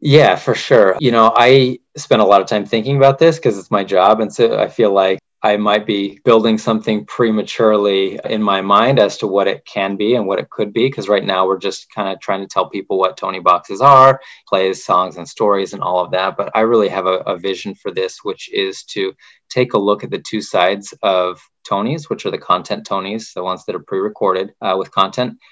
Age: 20-39